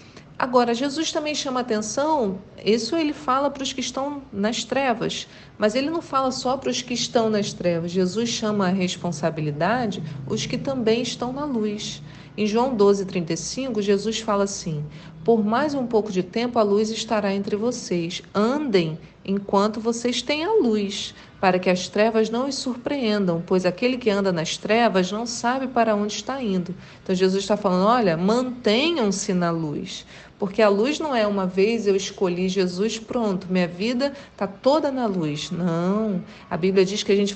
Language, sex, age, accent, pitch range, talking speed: Portuguese, female, 40-59, Brazilian, 190-245 Hz, 175 wpm